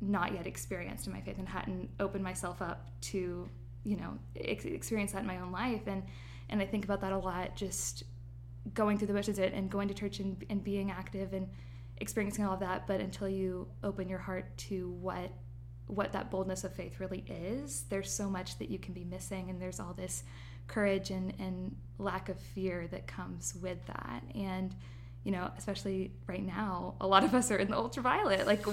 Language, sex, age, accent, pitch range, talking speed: English, female, 10-29, American, 120-195 Hz, 205 wpm